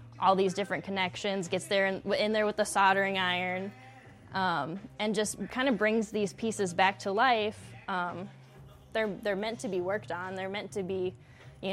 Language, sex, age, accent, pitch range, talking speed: English, female, 10-29, American, 175-205 Hz, 190 wpm